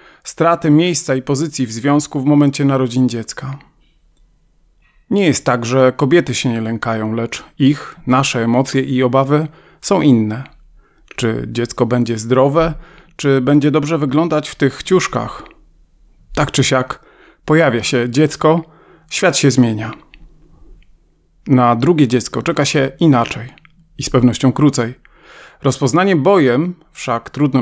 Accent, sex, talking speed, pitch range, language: native, male, 130 wpm, 125-155 Hz, Polish